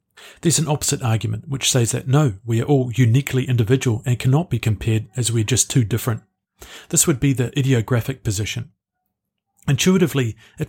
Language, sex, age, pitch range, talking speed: English, male, 40-59, 115-140 Hz, 170 wpm